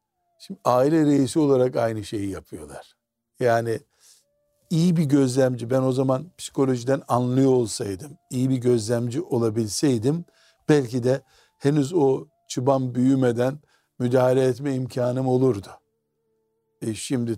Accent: native